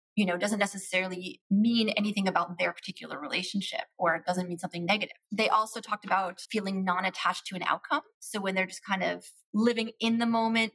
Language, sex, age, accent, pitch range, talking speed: English, female, 20-39, American, 185-225 Hz, 195 wpm